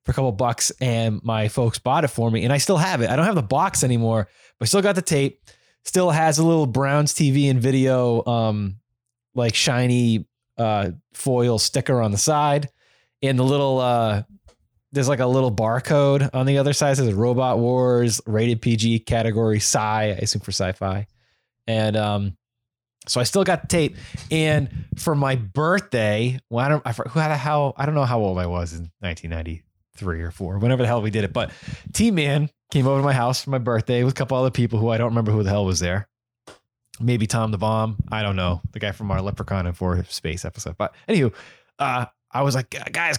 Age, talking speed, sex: 20-39, 220 wpm, male